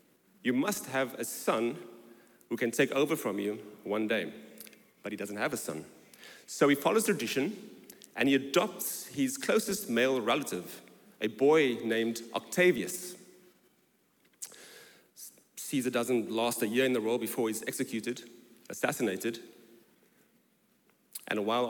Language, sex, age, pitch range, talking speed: English, male, 40-59, 115-150 Hz, 135 wpm